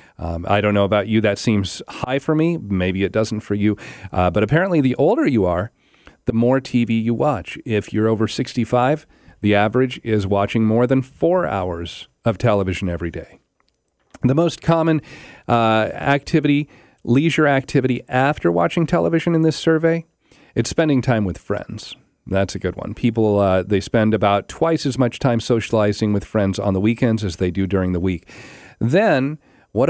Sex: male